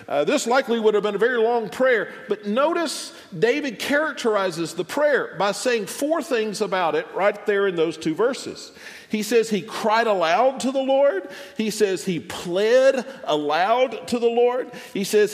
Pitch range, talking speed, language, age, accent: 195-270 Hz, 180 wpm, English, 50-69, American